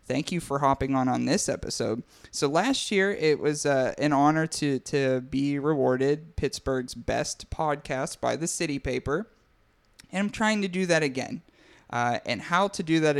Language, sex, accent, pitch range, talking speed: English, male, American, 130-165 Hz, 180 wpm